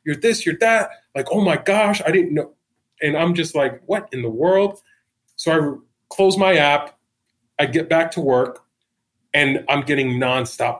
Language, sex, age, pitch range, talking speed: English, male, 30-49, 115-135 Hz, 185 wpm